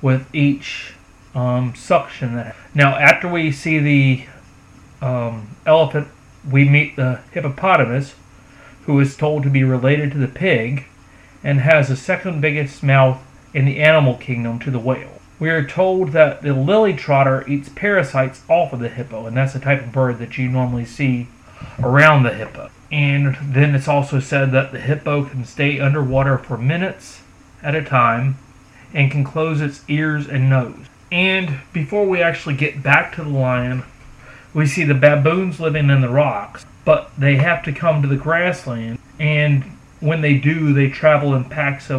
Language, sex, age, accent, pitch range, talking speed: English, male, 40-59, American, 125-150 Hz, 170 wpm